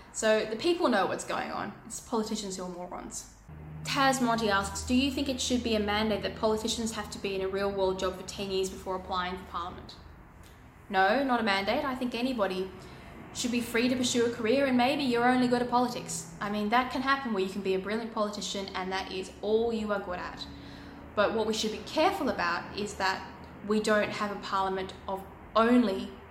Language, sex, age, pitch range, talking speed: English, female, 10-29, 190-235 Hz, 220 wpm